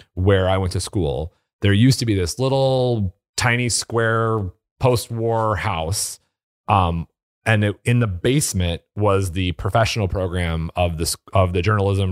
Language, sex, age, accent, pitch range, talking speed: English, male, 30-49, American, 90-115 Hz, 150 wpm